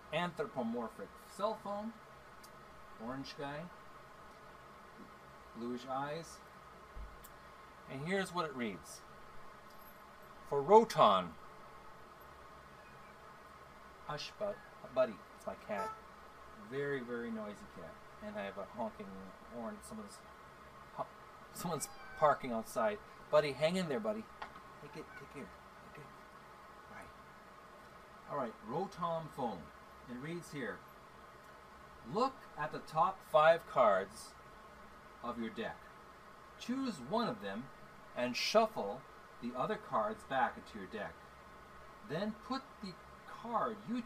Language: English